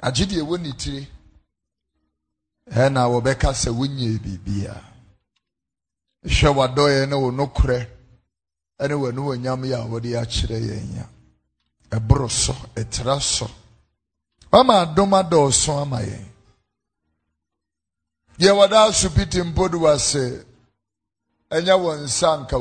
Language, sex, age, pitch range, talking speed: English, male, 50-69, 105-155 Hz, 80 wpm